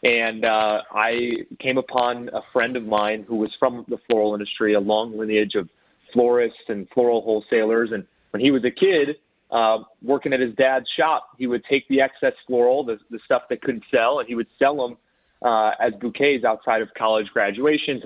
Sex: male